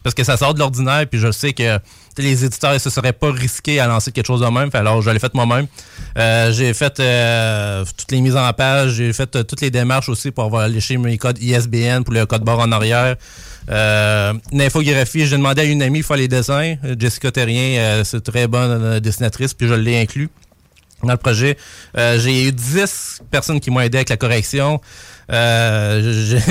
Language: French